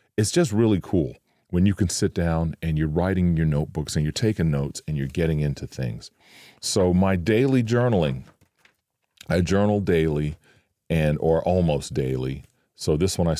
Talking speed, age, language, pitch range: 170 wpm, 40-59, English, 75-95 Hz